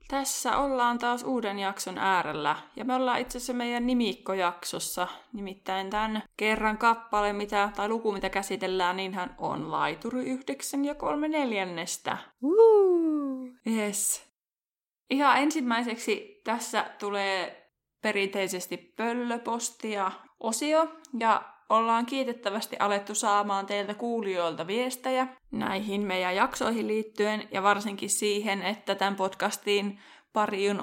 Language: Finnish